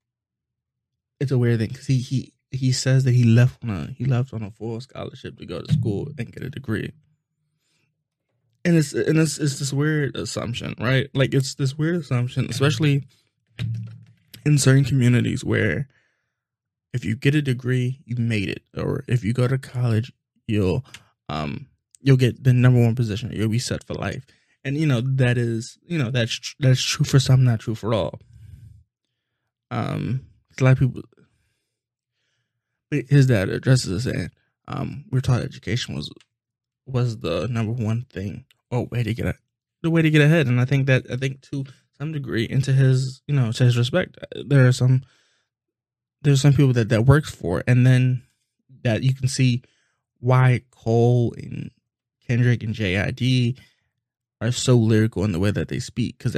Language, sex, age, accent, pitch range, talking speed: English, male, 20-39, American, 115-135 Hz, 180 wpm